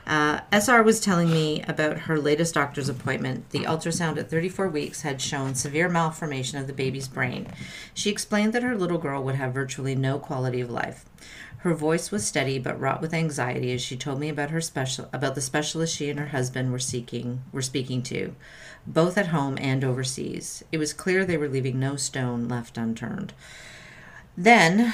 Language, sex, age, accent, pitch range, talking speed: English, female, 40-59, American, 135-175 Hz, 190 wpm